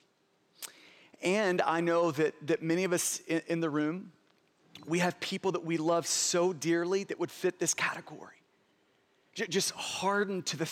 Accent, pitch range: American, 180-225 Hz